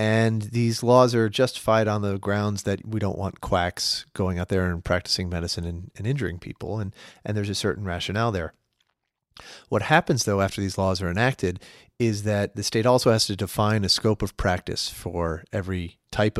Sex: male